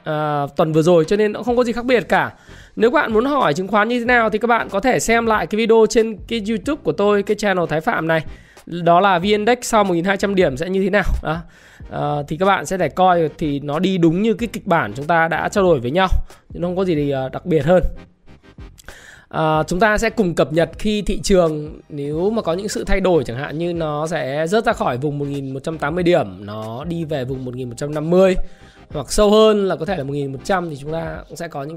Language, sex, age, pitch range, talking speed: Vietnamese, male, 20-39, 145-195 Hz, 245 wpm